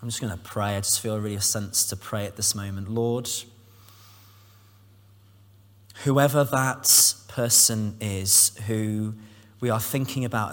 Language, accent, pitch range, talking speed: English, British, 100-110 Hz, 150 wpm